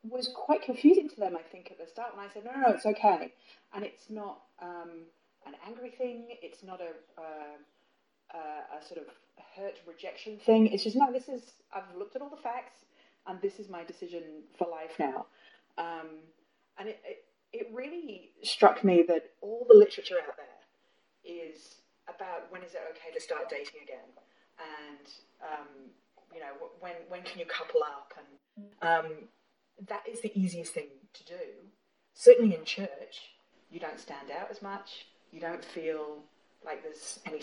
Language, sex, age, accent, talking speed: English, female, 30-49, British, 180 wpm